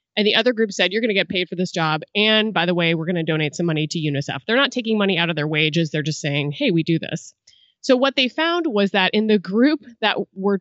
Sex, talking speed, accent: female, 290 wpm, American